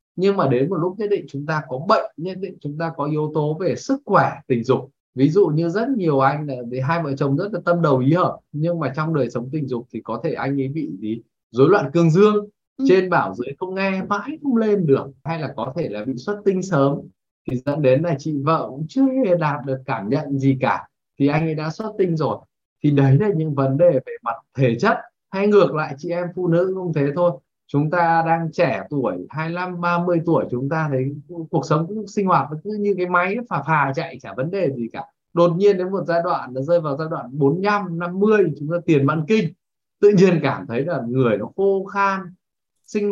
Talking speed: 240 wpm